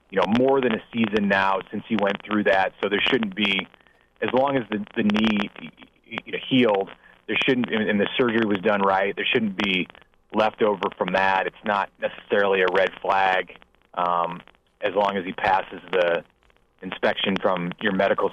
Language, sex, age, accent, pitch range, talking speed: English, male, 30-49, American, 95-115 Hz, 175 wpm